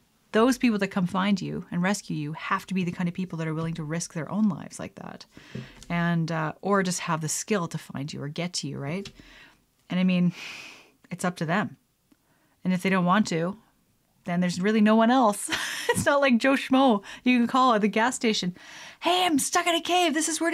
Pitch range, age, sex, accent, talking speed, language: 170-230 Hz, 30-49, female, American, 235 wpm, English